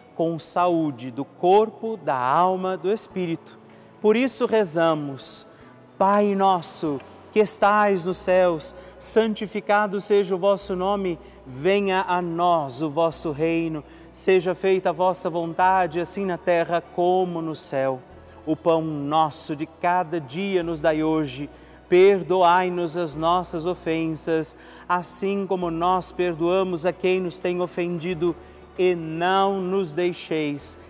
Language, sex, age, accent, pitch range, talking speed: Portuguese, male, 40-59, Brazilian, 155-185 Hz, 125 wpm